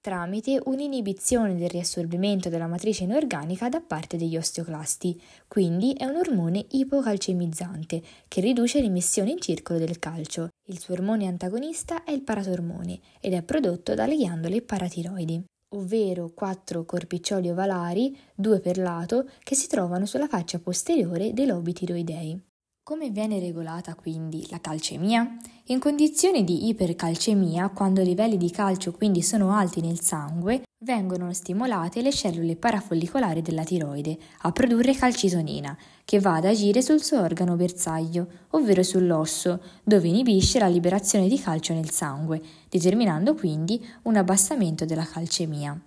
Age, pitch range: 20-39, 170-230 Hz